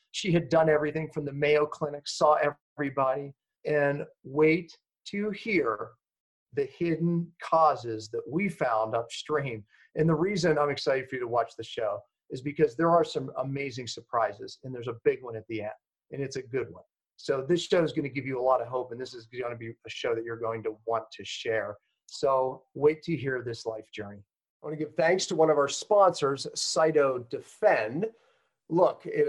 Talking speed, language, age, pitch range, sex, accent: 195 wpm, English, 40-59, 125-170 Hz, male, American